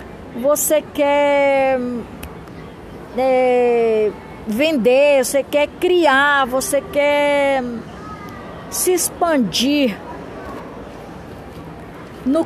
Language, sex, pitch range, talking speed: Portuguese, female, 235-295 Hz, 55 wpm